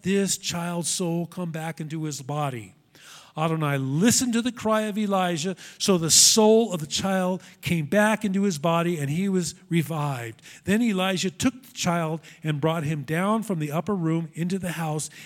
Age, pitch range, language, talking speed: 40-59, 155-205 Hz, English, 180 wpm